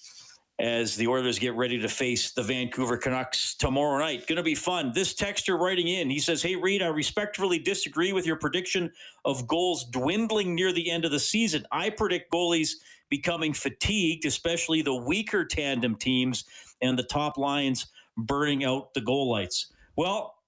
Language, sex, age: English, male, 40-59